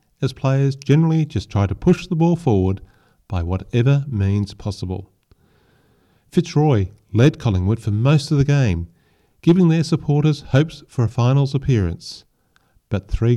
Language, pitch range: English, 95-135 Hz